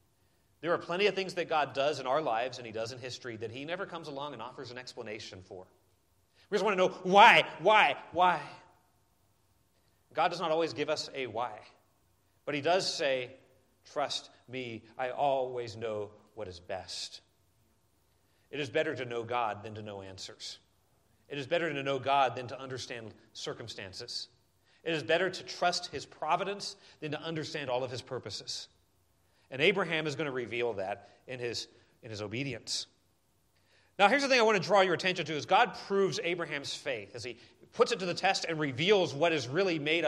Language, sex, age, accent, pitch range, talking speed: English, male, 40-59, American, 115-180 Hz, 195 wpm